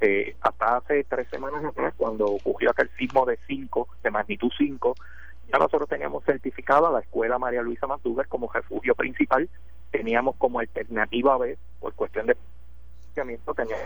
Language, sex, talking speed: Spanish, male, 155 wpm